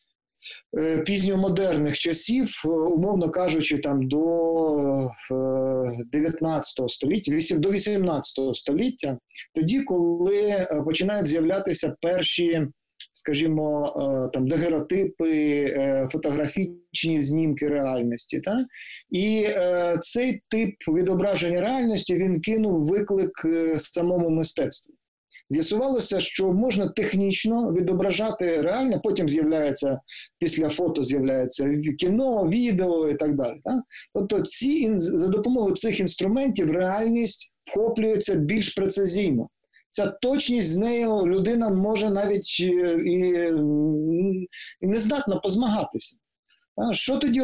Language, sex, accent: Ukrainian, male, native